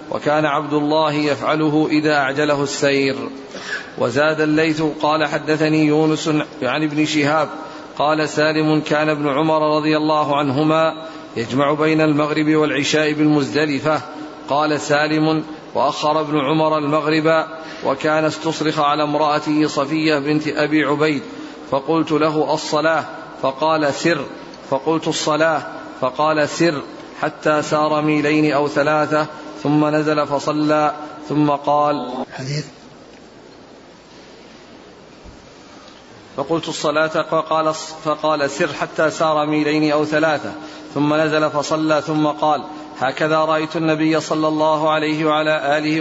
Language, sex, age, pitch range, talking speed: Arabic, male, 40-59, 150-155 Hz, 110 wpm